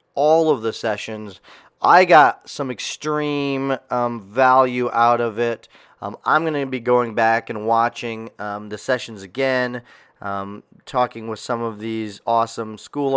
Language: English